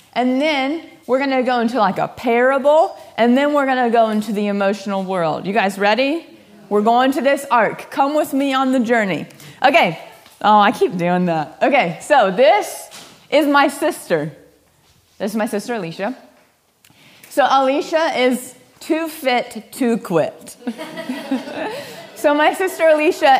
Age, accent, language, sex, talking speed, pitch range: 30-49, American, English, female, 160 wpm, 210-285 Hz